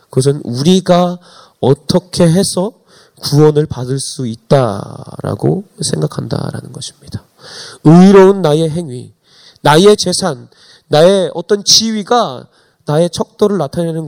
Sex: male